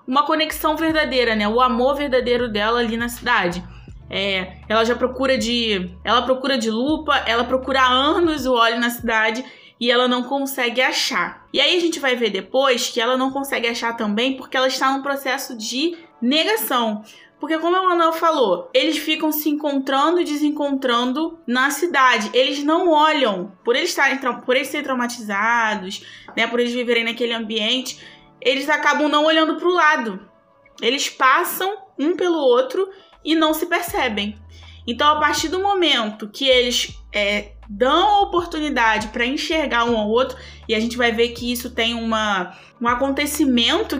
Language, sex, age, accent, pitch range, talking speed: Portuguese, female, 20-39, Brazilian, 230-300 Hz, 170 wpm